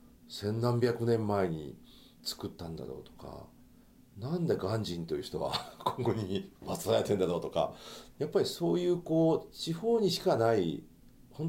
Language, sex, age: Japanese, male, 50-69